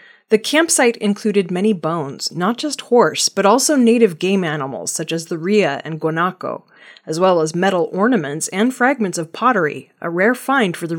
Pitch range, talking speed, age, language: 170-235 Hz, 180 wpm, 30-49, English